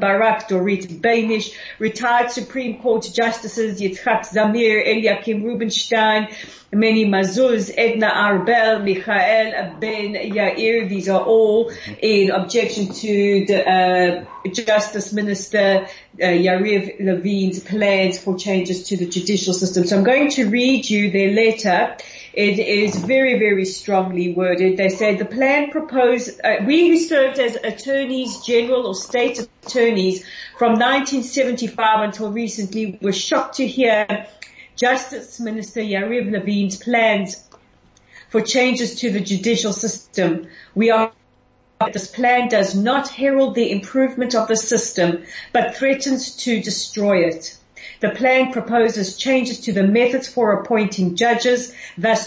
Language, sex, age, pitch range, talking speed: English, female, 40-59, 200-245 Hz, 130 wpm